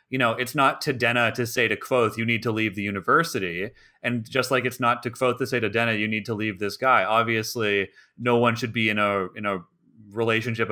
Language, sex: English, male